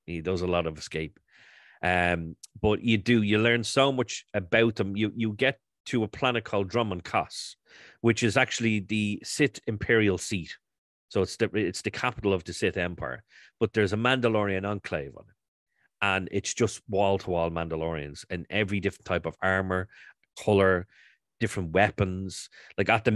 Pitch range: 90-115 Hz